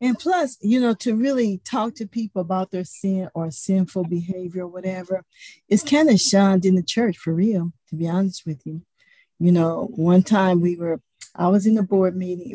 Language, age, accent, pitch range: English, 50-69, American, 175-205 Hz